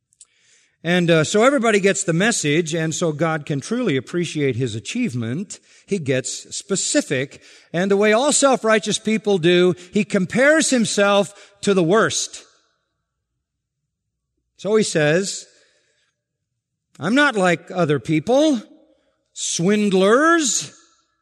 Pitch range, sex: 130-200 Hz, male